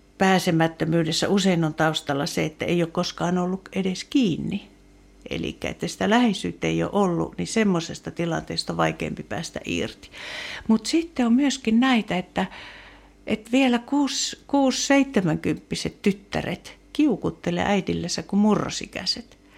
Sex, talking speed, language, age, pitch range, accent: female, 125 wpm, Finnish, 60-79, 165-235 Hz, native